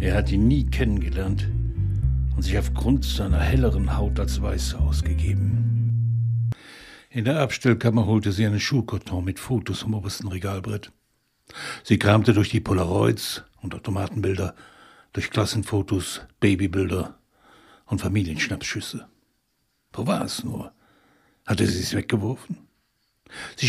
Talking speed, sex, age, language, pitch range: 120 wpm, male, 60-79, German, 95-130 Hz